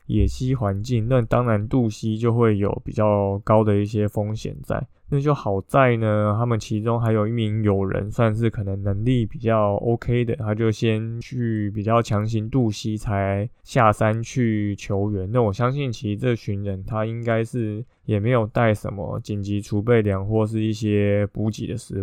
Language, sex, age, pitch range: Chinese, male, 20-39, 105-120 Hz